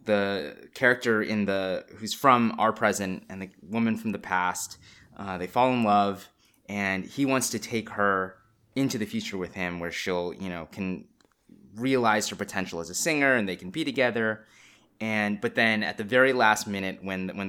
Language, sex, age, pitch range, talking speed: English, male, 20-39, 95-120 Hz, 190 wpm